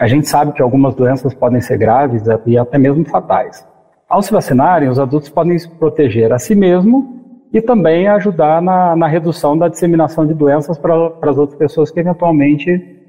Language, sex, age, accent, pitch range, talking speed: Portuguese, male, 40-59, Brazilian, 145-190 Hz, 190 wpm